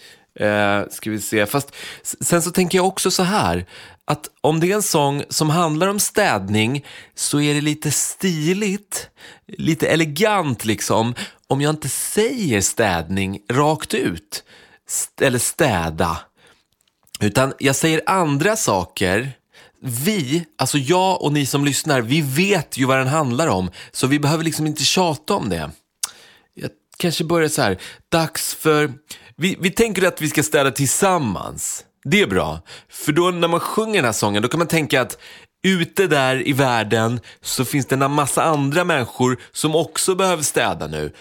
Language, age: English, 30-49